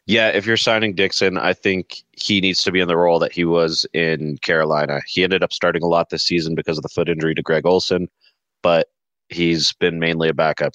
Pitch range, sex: 80-95 Hz, male